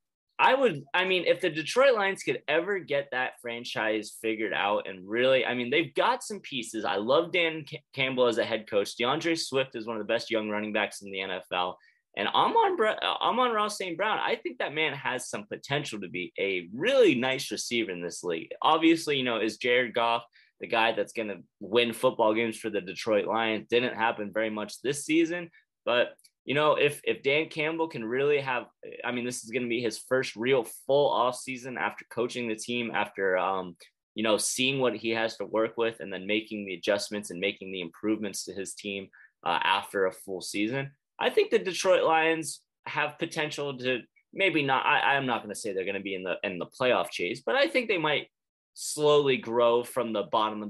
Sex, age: male, 20-39